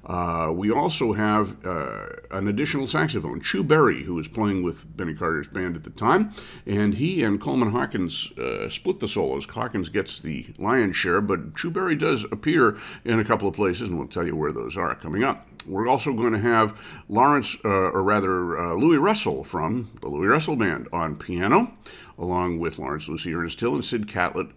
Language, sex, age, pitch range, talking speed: English, male, 50-69, 90-120 Hz, 195 wpm